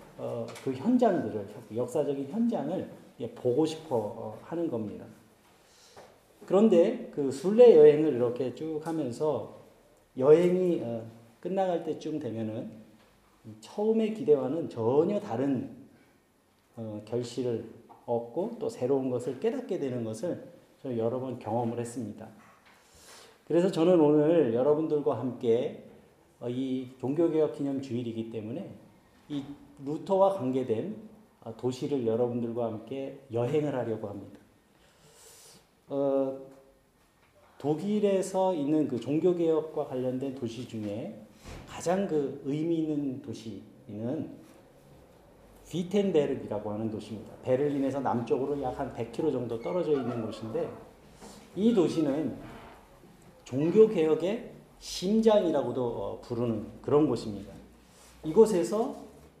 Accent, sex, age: native, male, 40-59